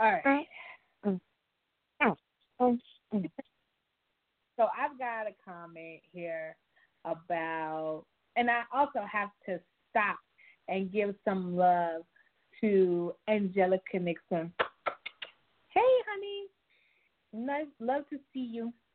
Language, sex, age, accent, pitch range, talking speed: English, female, 30-49, American, 180-245 Hz, 90 wpm